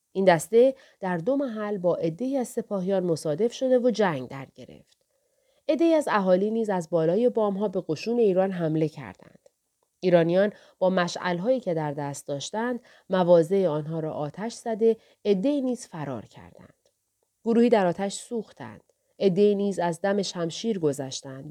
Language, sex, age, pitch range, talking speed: Persian, female, 30-49, 165-230 Hz, 150 wpm